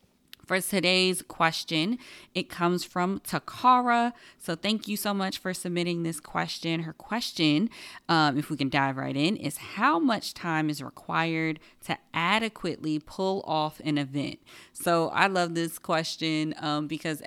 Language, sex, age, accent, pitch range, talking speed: English, female, 20-39, American, 145-185 Hz, 155 wpm